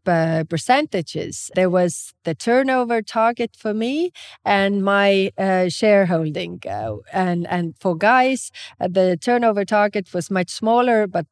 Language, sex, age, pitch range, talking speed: English, female, 30-49, 175-215 Hz, 140 wpm